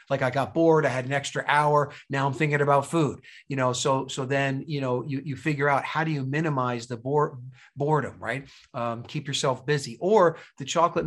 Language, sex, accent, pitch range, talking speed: English, male, American, 130-155 Hz, 215 wpm